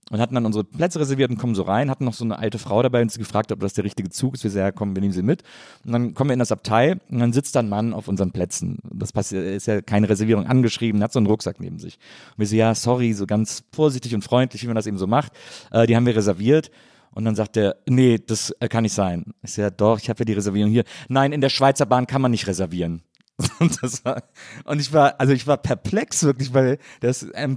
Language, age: German, 40-59